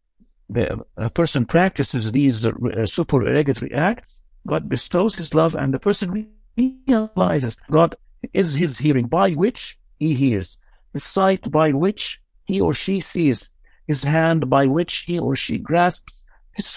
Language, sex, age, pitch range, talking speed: English, male, 60-79, 125-175 Hz, 145 wpm